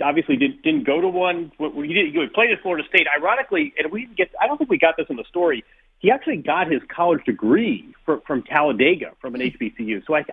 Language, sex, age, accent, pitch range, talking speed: English, male, 40-59, American, 135-190 Hz, 220 wpm